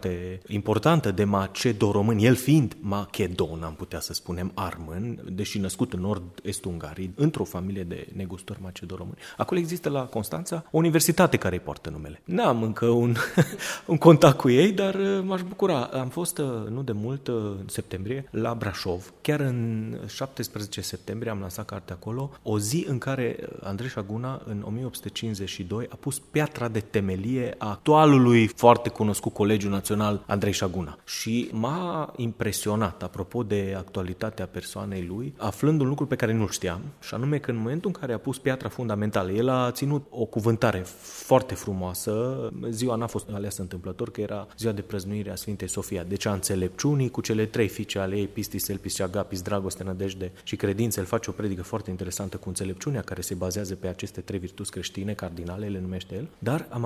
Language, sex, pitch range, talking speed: English, male, 95-125 Hz, 170 wpm